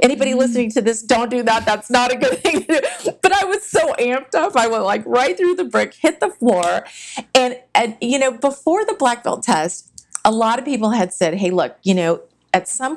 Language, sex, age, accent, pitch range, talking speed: English, female, 40-59, American, 180-245 Hz, 235 wpm